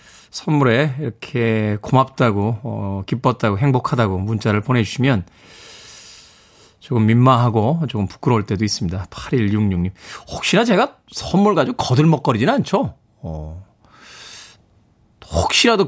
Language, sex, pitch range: Korean, male, 115-175 Hz